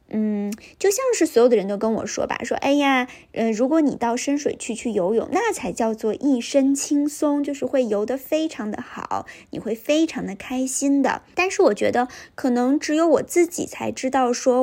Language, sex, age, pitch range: Chinese, female, 20-39, 230-295 Hz